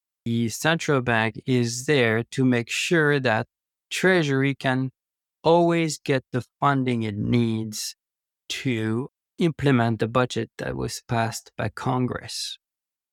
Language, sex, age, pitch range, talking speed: English, male, 20-39, 120-155 Hz, 120 wpm